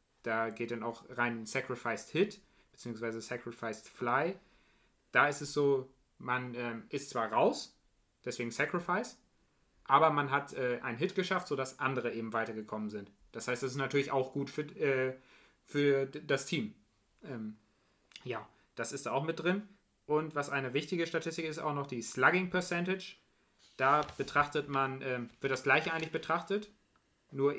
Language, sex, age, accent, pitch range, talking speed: German, male, 30-49, German, 120-150 Hz, 160 wpm